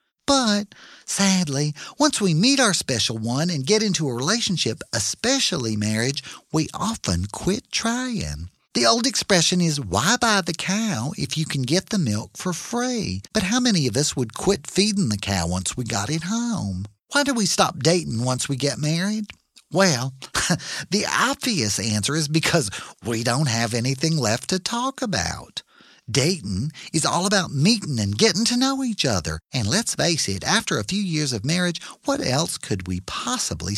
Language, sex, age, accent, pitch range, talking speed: English, male, 50-69, American, 130-205 Hz, 175 wpm